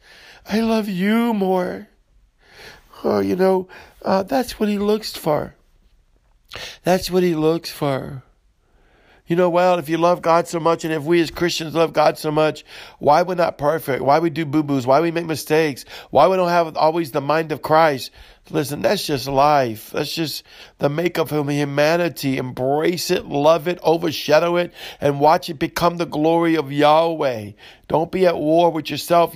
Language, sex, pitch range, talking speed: English, male, 150-180 Hz, 180 wpm